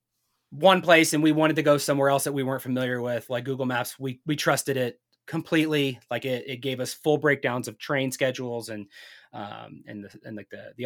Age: 30-49